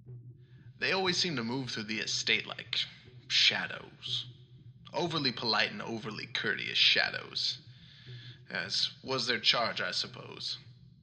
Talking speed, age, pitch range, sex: 120 wpm, 20-39, 120-145 Hz, male